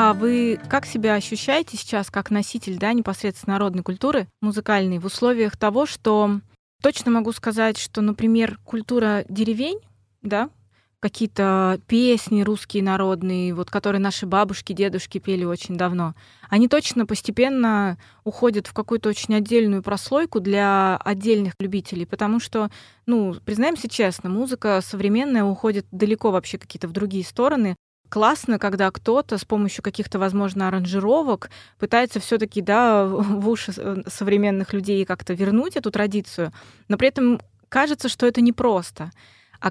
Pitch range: 190-225 Hz